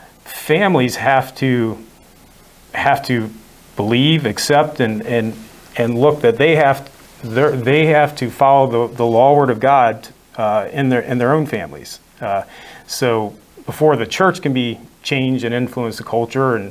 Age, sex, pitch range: 40-59, male, 115-135 Hz